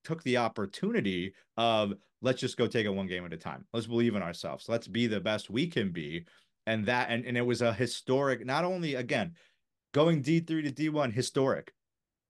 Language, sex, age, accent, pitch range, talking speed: English, male, 30-49, American, 105-135 Hz, 210 wpm